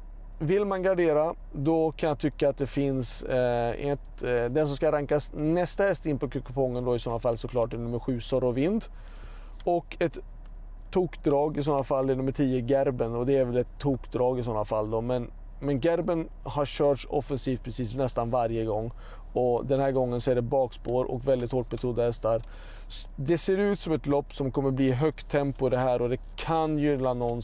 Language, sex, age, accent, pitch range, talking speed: Swedish, male, 30-49, native, 120-155 Hz, 205 wpm